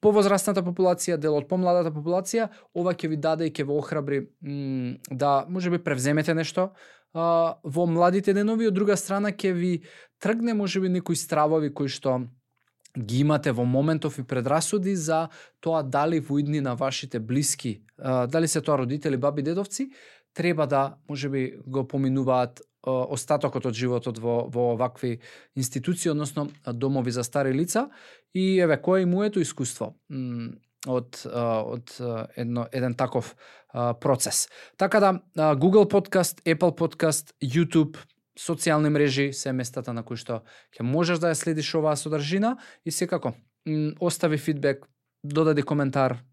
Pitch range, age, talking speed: 130-170 Hz, 20-39, 140 wpm